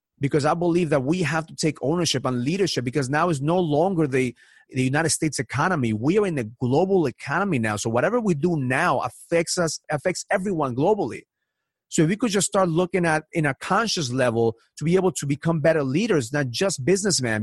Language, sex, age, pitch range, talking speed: English, male, 30-49, 140-190 Hz, 205 wpm